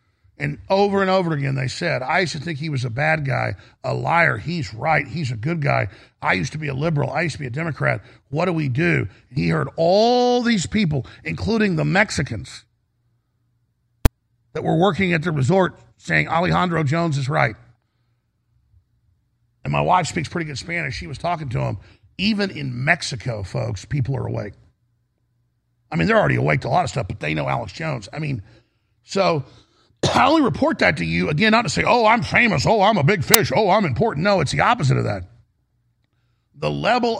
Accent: American